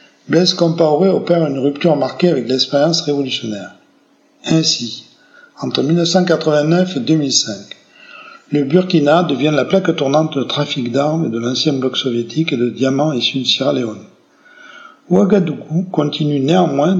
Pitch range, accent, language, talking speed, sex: 130-165 Hz, French, French, 130 wpm, male